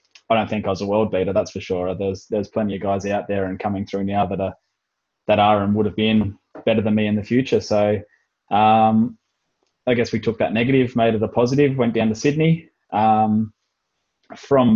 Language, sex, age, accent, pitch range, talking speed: English, male, 20-39, Australian, 100-115 Hz, 220 wpm